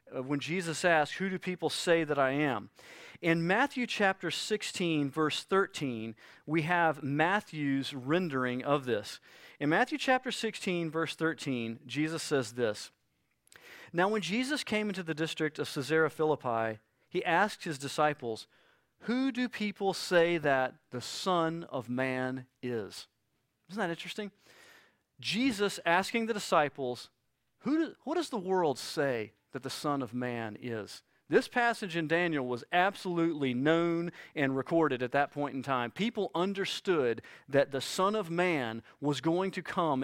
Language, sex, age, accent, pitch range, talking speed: English, male, 40-59, American, 140-190 Hz, 150 wpm